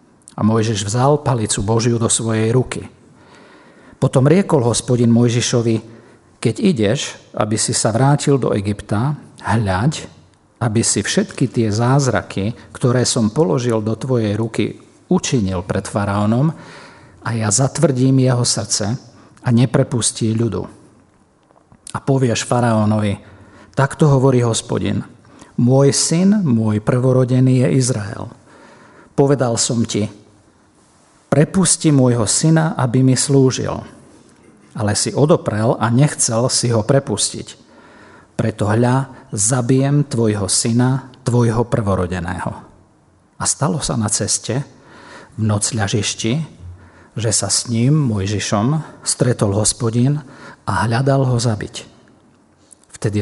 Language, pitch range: Slovak, 105-135 Hz